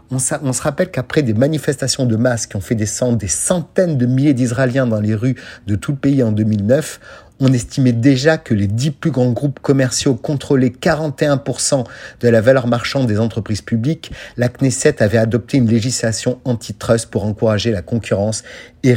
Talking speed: 180 wpm